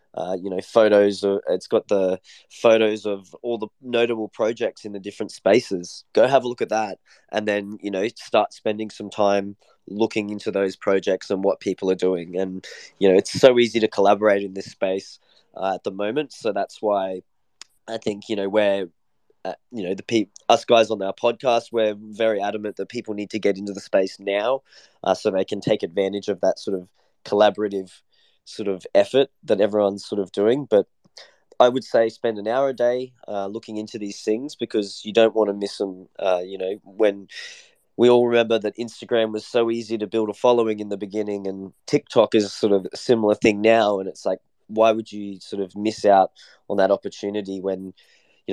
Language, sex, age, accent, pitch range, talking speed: English, male, 20-39, Australian, 100-110 Hz, 210 wpm